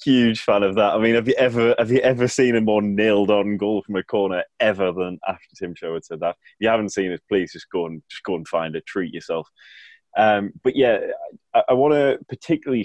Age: 20-39